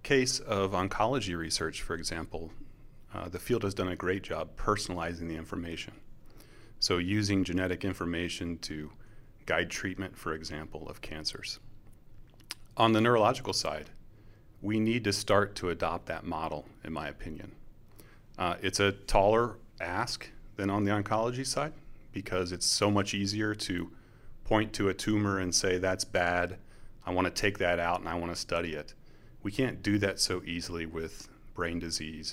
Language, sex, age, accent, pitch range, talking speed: English, male, 30-49, American, 90-110 Hz, 165 wpm